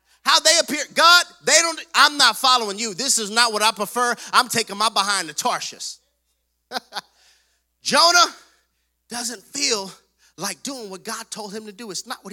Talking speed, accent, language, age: 175 wpm, American, English, 30-49